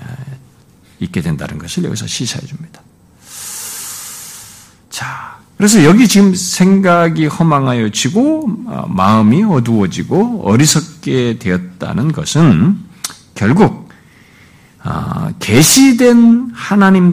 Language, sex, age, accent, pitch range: Korean, male, 50-69, native, 130-200 Hz